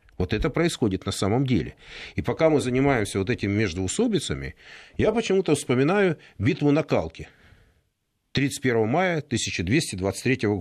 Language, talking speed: Russian, 125 wpm